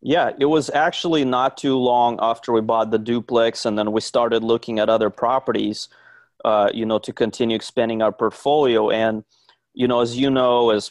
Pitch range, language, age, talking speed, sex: 105-120 Hz, English, 30-49, 195 wpm, male